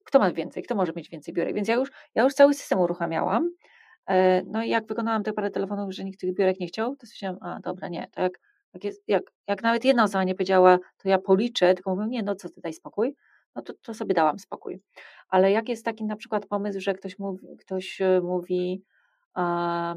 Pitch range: 180-220 Hz